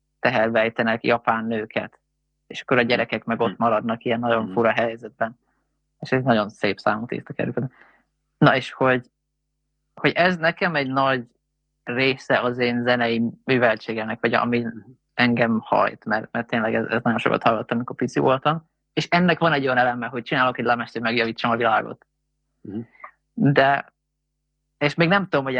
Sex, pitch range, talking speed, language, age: male, 115-140 Hz, 160 wpm, Hungarian, 20-39